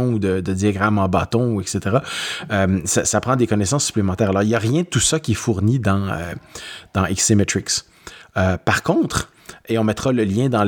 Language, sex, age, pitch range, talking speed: French, male, 30-49, 100-125 Hz, 215 wpm